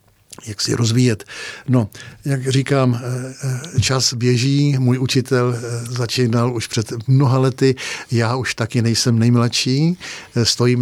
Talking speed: 115 wpm